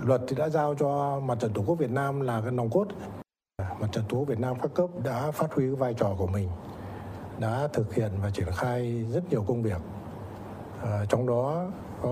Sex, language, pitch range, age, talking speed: male, Vietnamese, 105-150 Hz, 60-79, 220 wpm